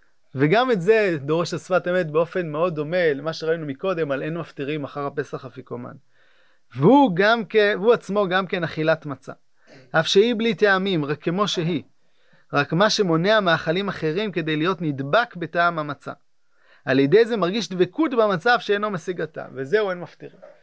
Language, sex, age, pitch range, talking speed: Hebrew, male, 30-49, 160-205 Hz, 155 wpm